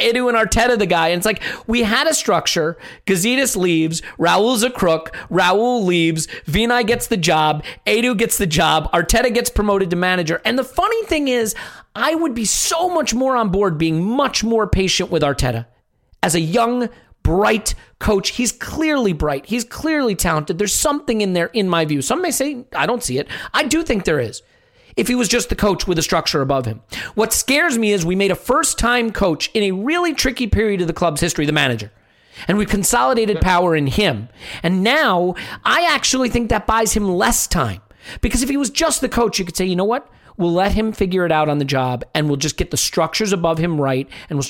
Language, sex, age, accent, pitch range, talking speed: English, male, 40-59, American, 165-245 Hz, 215 wpm